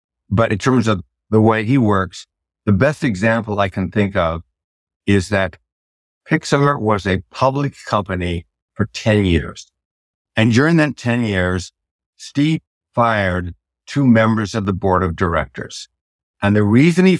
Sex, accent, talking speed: male, American, 150 wpm